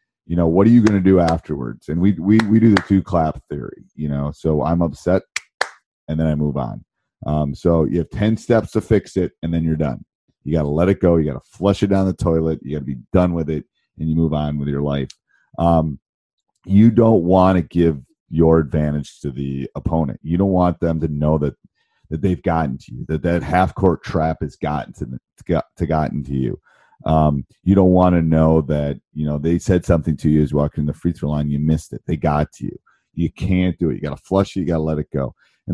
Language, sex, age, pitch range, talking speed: English, male, 40-59, 75-90 Hz, 245 wpm